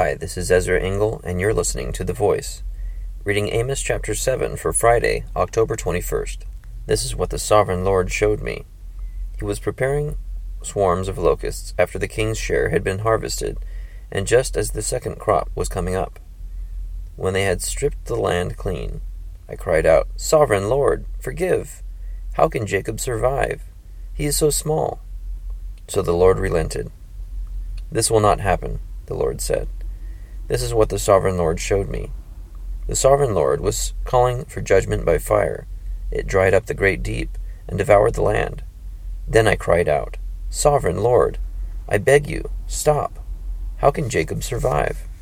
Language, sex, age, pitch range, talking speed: English, male, 30-49, 85-110 Hz, 160 wpm